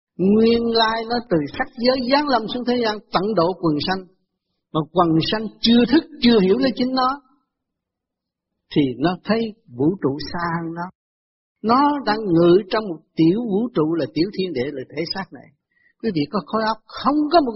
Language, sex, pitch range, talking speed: Vietnamese, male, 150-225 Hz, 195 wpm